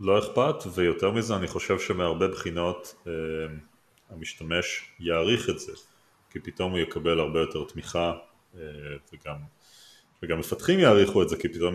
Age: 30-49